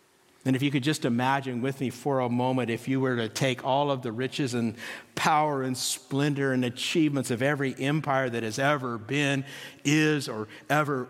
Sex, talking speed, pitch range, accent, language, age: male, 195 wpm, 130-150 Hz, American, English, 50-69